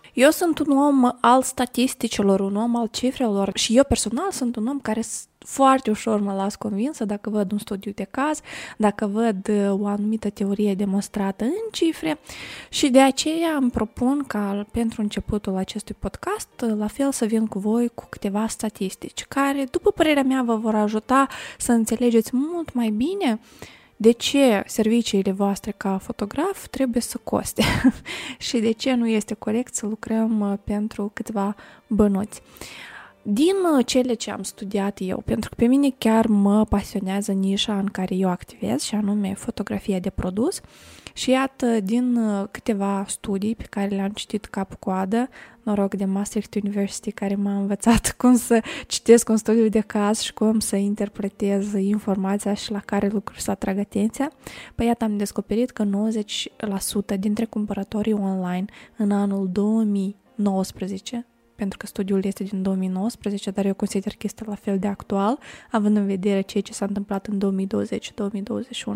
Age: 20-39